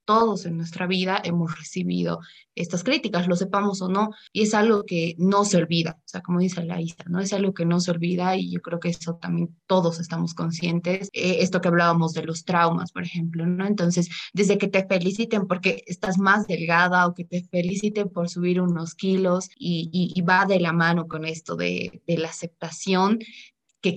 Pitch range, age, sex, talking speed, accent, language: 170-190 Hz, 20-39, female, 205 wpm, Mexican, Spanish